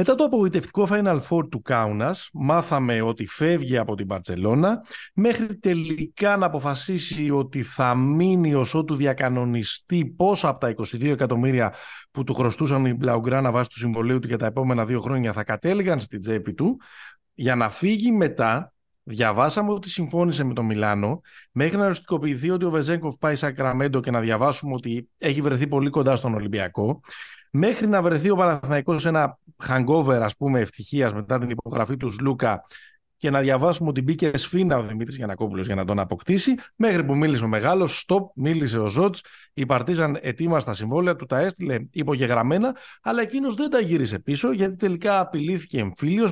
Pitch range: 125-180 Hz